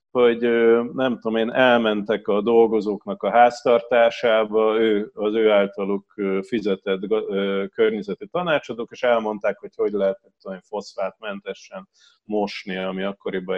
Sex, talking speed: male, 115 wpm